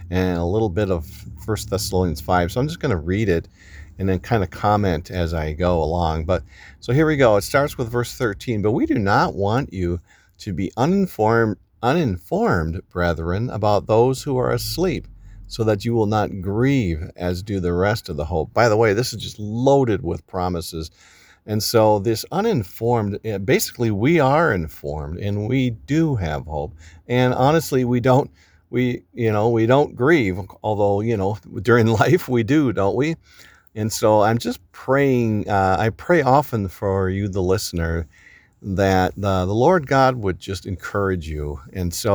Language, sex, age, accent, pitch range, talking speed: English, male, 50-69, American, 90-120 Hz, 180 wpm